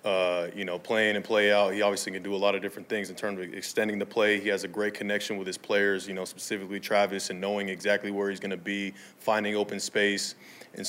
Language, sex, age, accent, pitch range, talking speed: English, male, 20-39, American, 100-160 Hz, 255 wpm